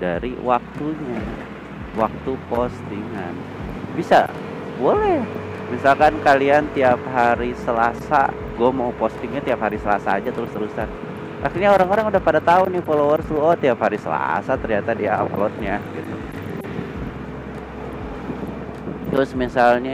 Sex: male